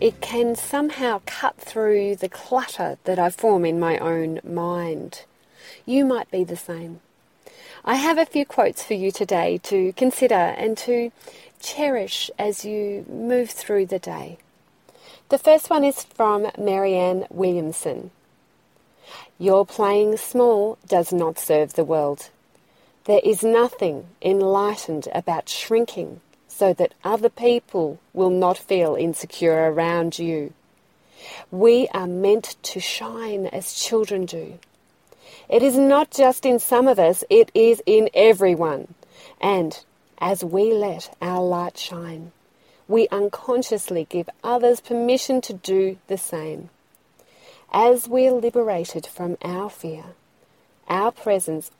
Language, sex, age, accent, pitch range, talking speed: English, female, 40-59, Australian, 175-245 Hz, 130 wpm